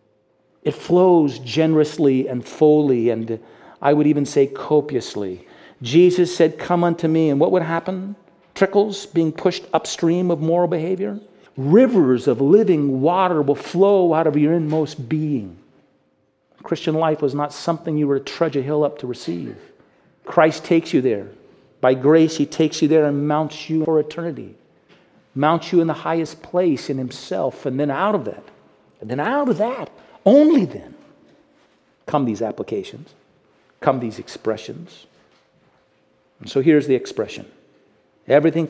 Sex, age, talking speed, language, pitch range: male, 50-69, 150 wpm, English, 140-170 Hz